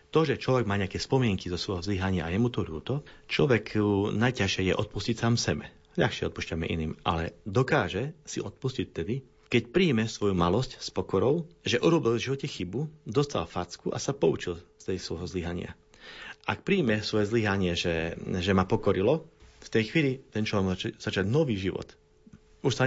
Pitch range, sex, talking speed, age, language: 95-120 Hz, male, 170 wpm, 40-59, Slovak